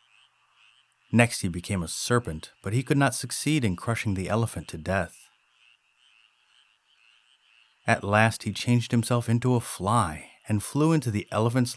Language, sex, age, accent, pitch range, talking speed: English, male, 30-49, American, 90-125 Hz, 150 wpm